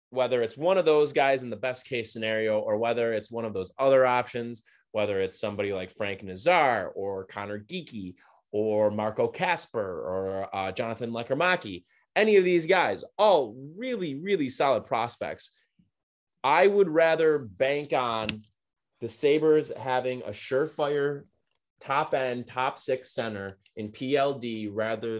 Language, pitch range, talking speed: English, 105-145 Hz, 150 wpm